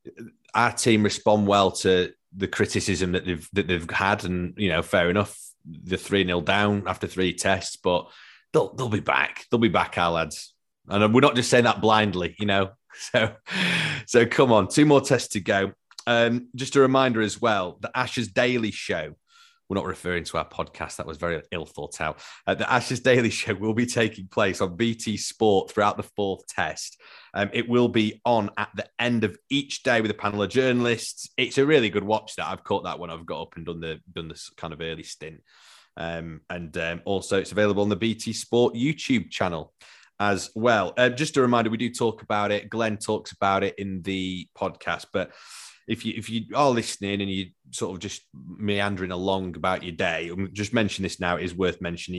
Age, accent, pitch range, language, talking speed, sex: 30-49, British, 90-115 Hz, English, 210 wpm, male